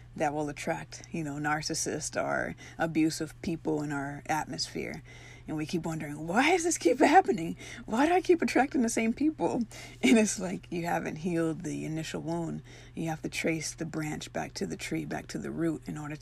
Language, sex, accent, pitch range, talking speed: English, female, American, 140-165 Hz, 200 wpm